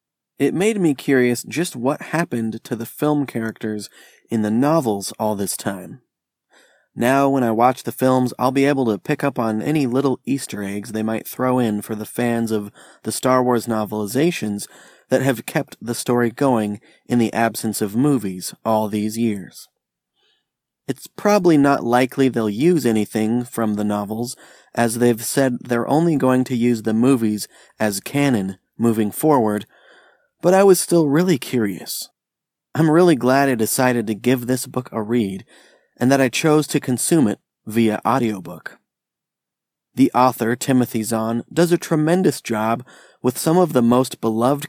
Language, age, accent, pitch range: English, 30-49, American, 110-140 Hz